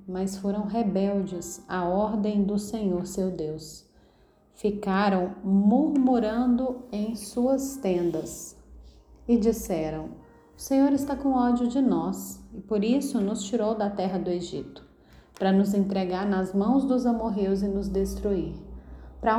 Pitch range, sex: 190-240 Hz, female